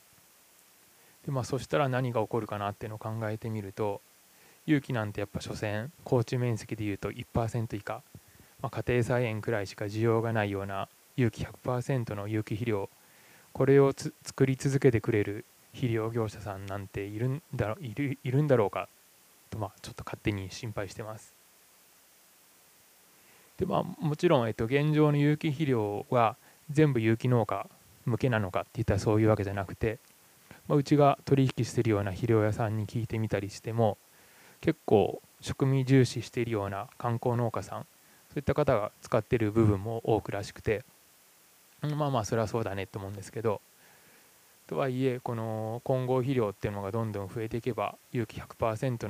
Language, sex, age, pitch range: Japanese, male, 20-39, 105-130 Hz